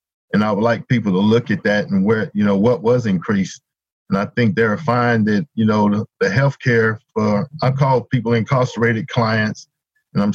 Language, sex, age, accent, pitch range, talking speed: English, male, 50-69, American, 110-125 Hz, 205 wpm